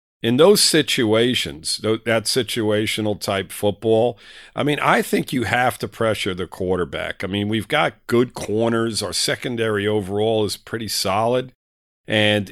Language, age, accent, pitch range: English, 50-69, American, 100-115 Hz